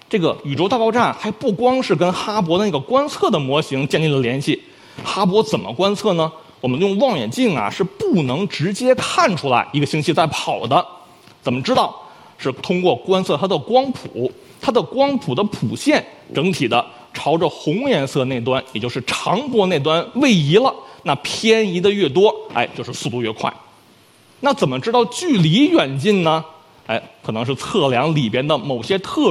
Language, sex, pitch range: Chinese, male, 140-225 Hz